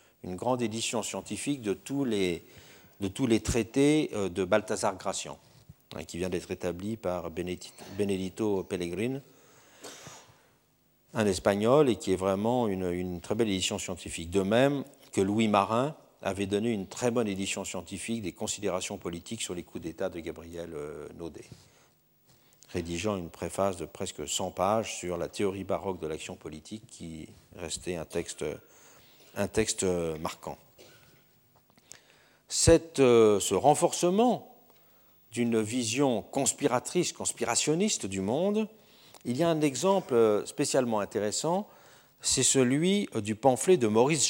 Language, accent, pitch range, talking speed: French, French, 95-130 Hz, 130 wpm